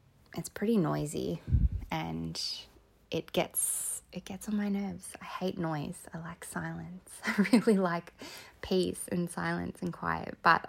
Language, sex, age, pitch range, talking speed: English, female, 20-39, 165-195 Hz, 145 wpm